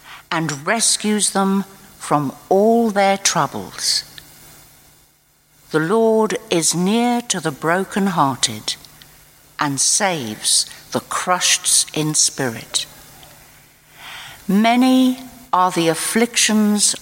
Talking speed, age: 85 wpm, 60-79